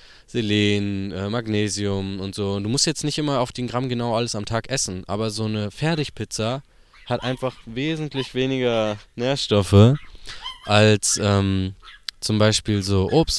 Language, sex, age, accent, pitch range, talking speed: German, male, 20-39, German, 100-130 Hz, 150 wpm